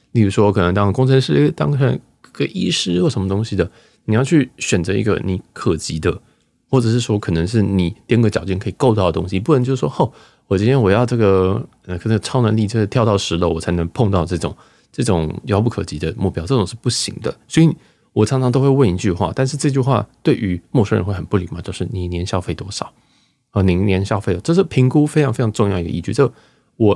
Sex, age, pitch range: male, 20-39, 95-130 Hz